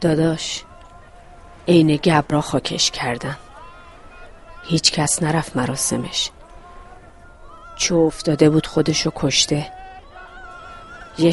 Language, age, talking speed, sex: Persian, 40-59, 80 wpm, female